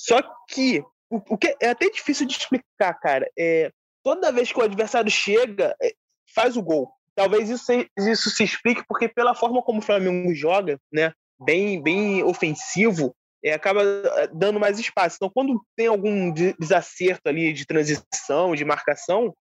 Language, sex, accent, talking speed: Portuguese, male, Brazilian, 160 wpm